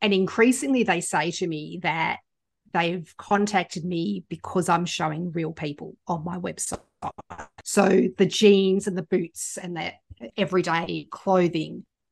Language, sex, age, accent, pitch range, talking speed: English, female, 40-59, Australian, 170-195 Hz, 140 wpm